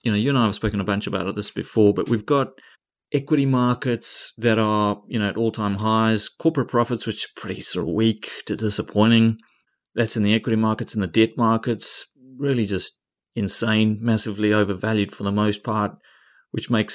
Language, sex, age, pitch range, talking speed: English, male, 30-49, 100-115 Hz, 190 wpm